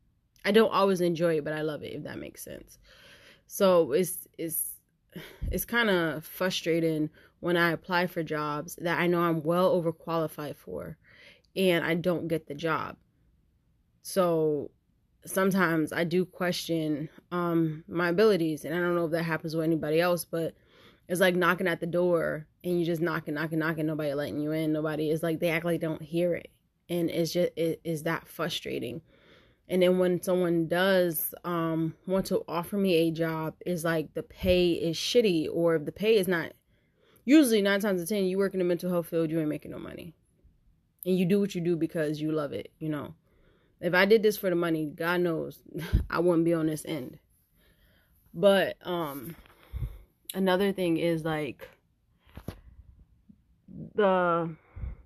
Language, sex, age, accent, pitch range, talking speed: English, female, 20-39, American, 160-180 Hz, 180 wpm